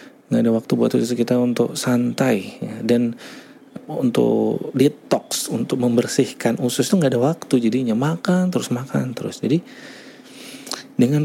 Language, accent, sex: English, Indonesian, male